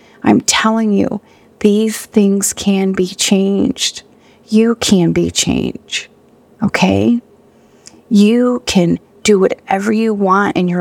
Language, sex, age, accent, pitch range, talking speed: English, female, 40-59, American, 180-220 Hz, 115 wpm